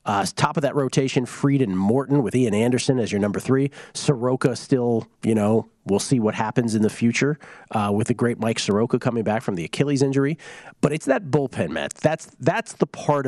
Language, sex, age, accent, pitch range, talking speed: English, male, 40-59, American, 115-150 Hz, 210 wpm